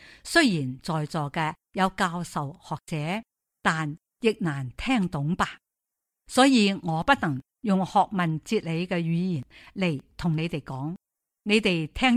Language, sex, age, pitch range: Chinese, female, 50-69, 160-220 Hz